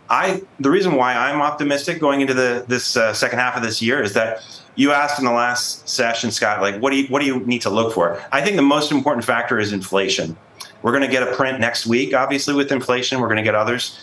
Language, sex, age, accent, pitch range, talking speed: English, male, 30-49, American, 110-140 Hz, 255 wpm